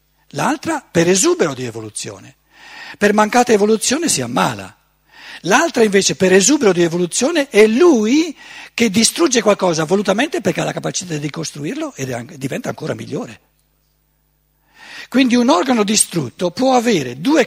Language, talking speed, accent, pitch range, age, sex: Italian, 135 wpm, native, 165-260 Hz, 60-79, male